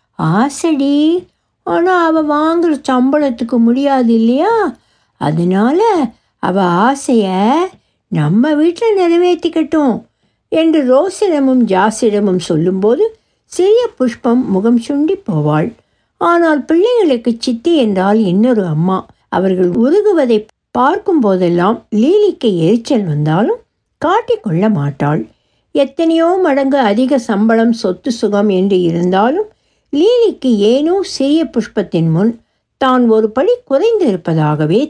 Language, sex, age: Tamil, female, 60-79